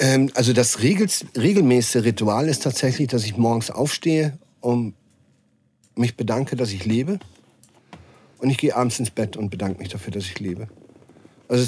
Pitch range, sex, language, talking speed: 110-130 Hz, male, German, 160 wpm